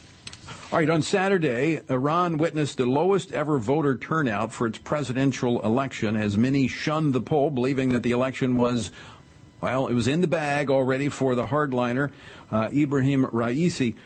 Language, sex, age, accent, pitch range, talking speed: English, male, 50-69, American, 120-150 Hz, 160 wpm